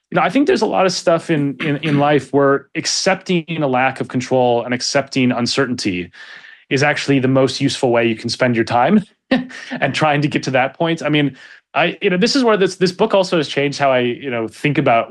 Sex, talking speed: male, 240 wpm